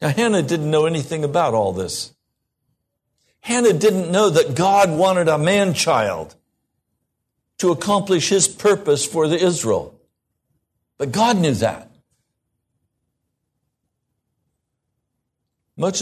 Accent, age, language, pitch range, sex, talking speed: American, 60-79, English, 125-190 Hz, male, 105 wpm